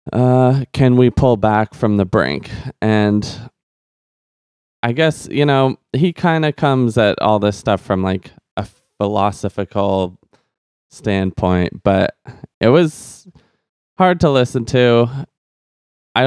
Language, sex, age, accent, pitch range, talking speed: English, male, 20-39, American, 100-120 Hz, 125 wpm